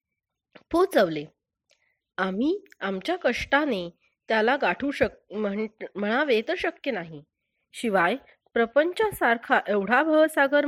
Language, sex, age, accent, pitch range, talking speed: Marathi, female, 30-49, native, 200-280 Hz, 95 wpm